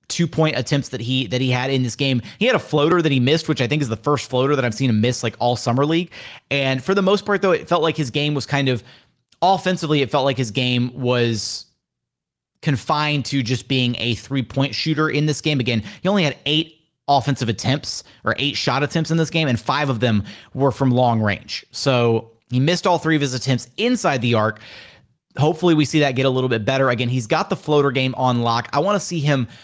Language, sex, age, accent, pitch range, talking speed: English, male, 30-49, American, 115-150 Hz, 240 wpm